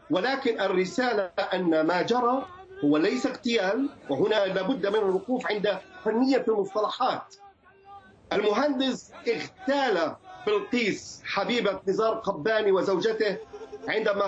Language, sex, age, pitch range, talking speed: Arabic, male, 40-59, 200-270 Hz, 100 wpm